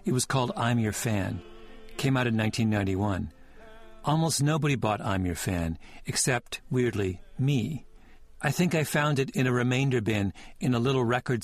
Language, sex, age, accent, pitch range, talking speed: English, male, 50-69, American, 105-135 Hz, 170 wpm